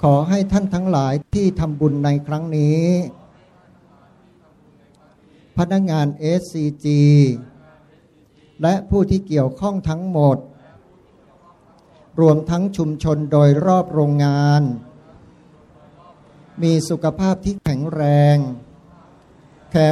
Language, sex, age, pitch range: Thai, male, 60-79, 145-170 Hz